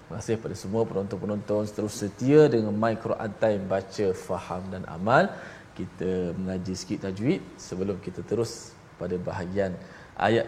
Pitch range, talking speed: 105-150 Hz, 130 wpm